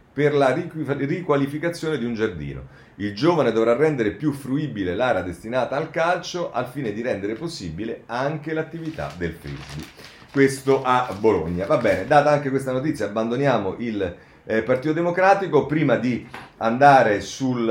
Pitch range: 85-130 Hz